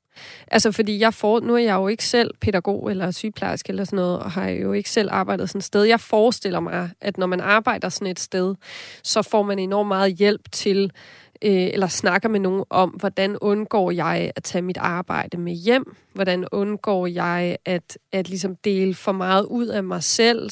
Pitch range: 180-210 Hz